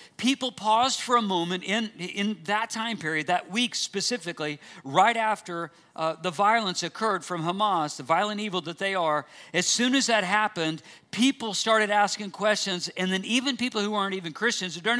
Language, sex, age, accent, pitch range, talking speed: English, male, 50-69, American, 170-215 Hz, 185 wpm